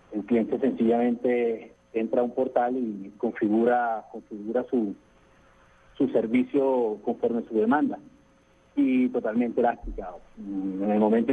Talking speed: 120 wpm